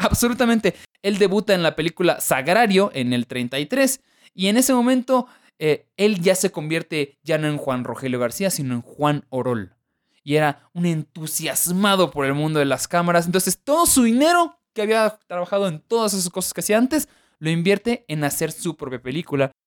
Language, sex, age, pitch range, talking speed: Spanish, male, 20-39, 150-225 Hz, 185 wpm